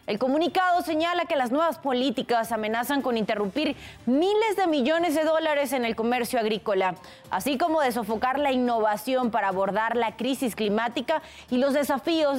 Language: Spanish